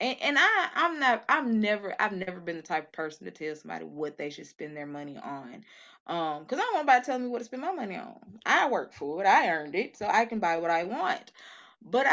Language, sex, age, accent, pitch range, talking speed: English, female, 20-39, American, 160-210 Hz, 260 wpm